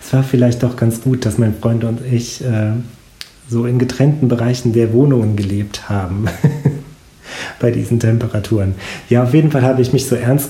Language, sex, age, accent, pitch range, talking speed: German, male, 40-59, German, 100-125 Hz, 175 wpm